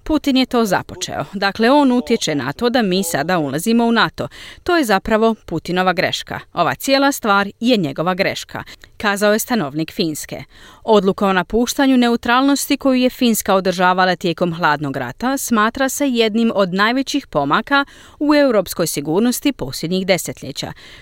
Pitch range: 165-245 Hz